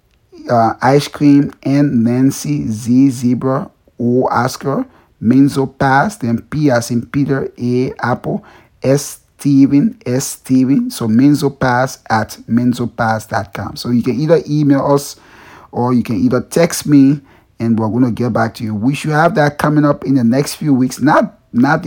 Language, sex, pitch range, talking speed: English, male, 115-140 Hz, 165 wpm